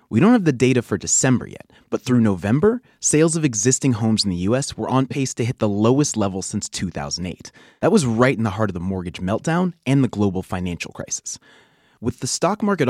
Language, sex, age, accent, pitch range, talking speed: English, male, 30-49, American, 95-135 Hz, 220 wpm